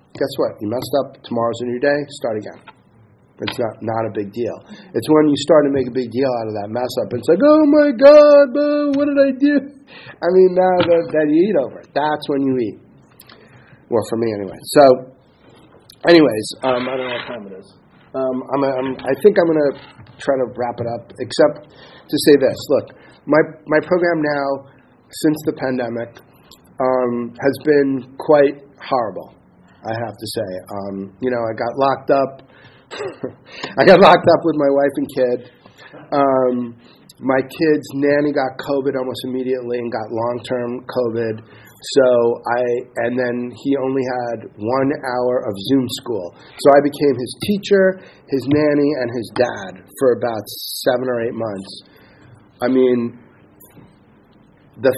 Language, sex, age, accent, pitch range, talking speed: English, male, 40-59, American, 120-150 Hz, 175 wpm